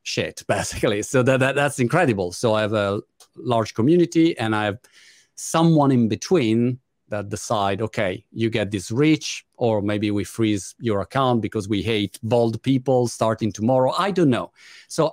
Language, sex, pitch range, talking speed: Italian, male, 105-135 Hz, 170 wpm